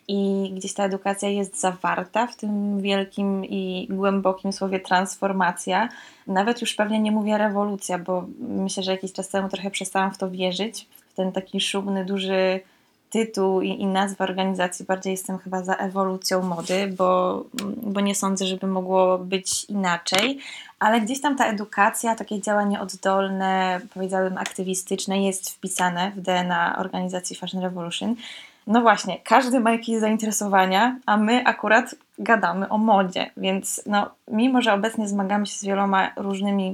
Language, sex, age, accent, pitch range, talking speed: Polish, female, 20-39, native, 190-210 Hz, 150 wpm